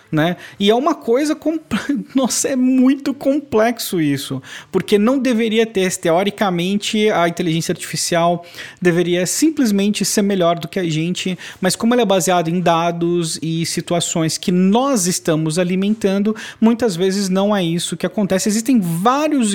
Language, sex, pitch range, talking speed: Portuguese, male, 170-215 Hz, 145 wpm